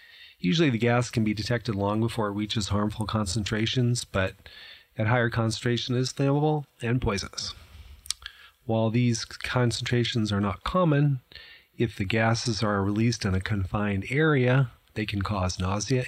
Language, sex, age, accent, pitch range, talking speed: English, male, 30-49, American, 100-120 Hz, 150 wpm